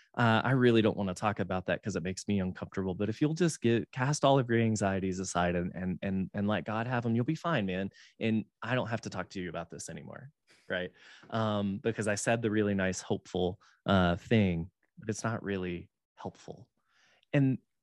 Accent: American